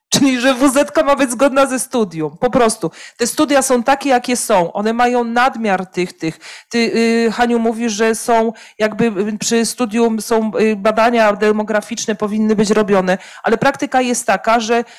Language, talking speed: Polish, 160 wpm